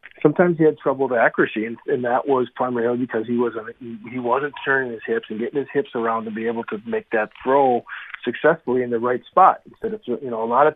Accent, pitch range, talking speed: American, 115-140 Hz, 240 wpm